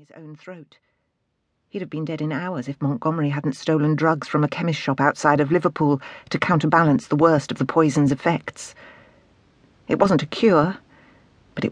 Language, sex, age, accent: English, female, 50-69, British